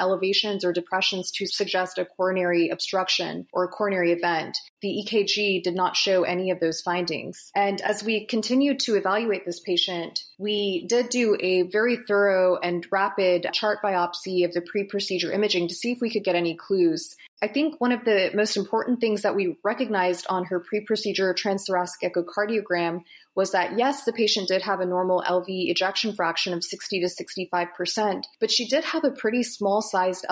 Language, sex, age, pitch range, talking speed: English, female, 30-49, 180-210 Hz, 180 wpm